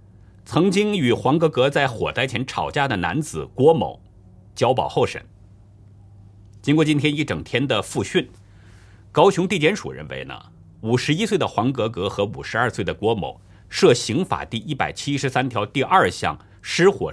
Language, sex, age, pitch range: Chinese, male, 50-69, 100-140 Hz